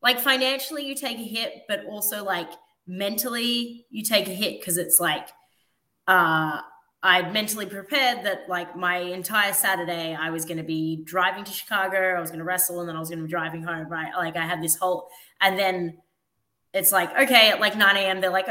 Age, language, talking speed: 20-39, English, 215 wpm